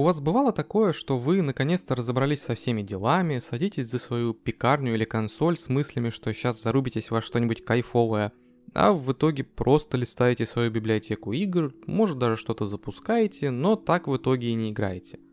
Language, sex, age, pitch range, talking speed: Russian, male, 20-39, 115-165 Hz, 170 wpm